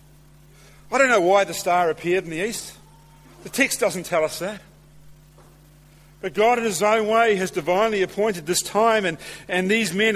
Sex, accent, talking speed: male, Australian, 185 wpm